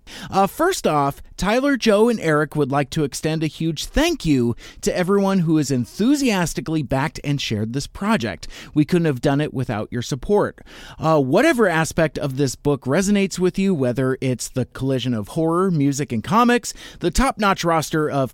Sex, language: male, English